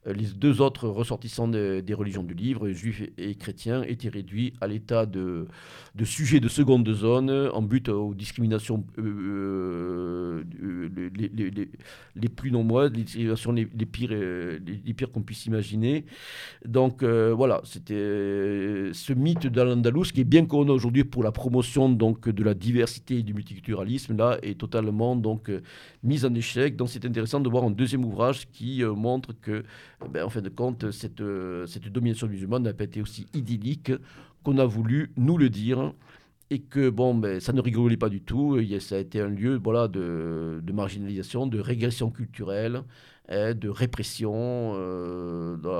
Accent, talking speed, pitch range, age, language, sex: French, 170 wpm, 105-130 Hz, 50-69, French, male